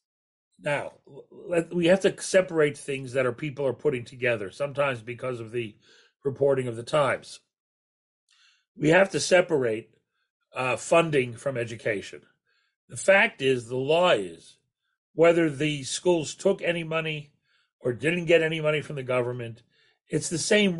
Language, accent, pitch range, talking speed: English, American, 140-180 Hz, 145 wpm